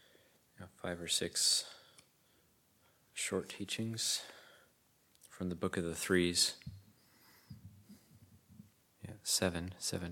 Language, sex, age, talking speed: English, male, 30-49, 85 wpm